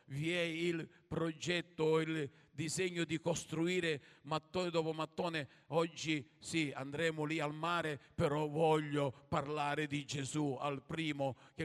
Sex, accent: male, native